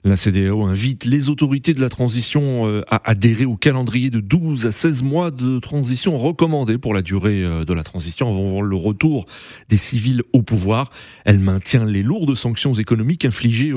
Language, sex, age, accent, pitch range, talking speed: French, male, 30-49, French, 105-145 Hz, 175 wpm